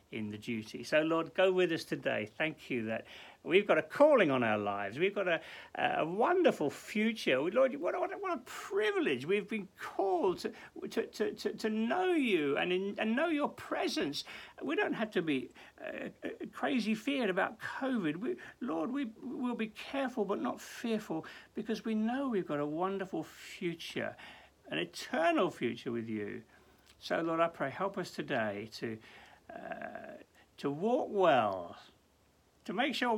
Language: English